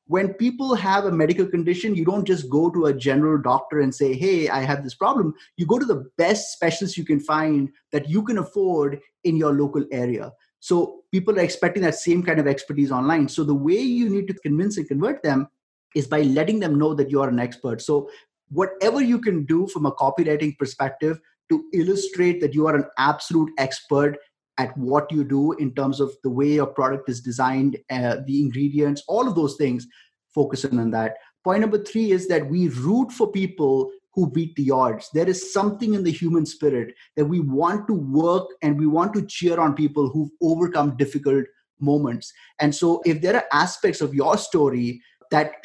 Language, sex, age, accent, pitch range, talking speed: English, male, 30-49, Indian, 140-180 Hz, 205 wpm